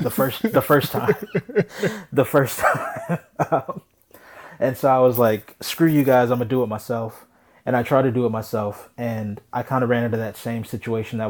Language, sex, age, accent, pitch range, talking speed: English, male, 20-39, American, 105-120 Hz, 205 wpm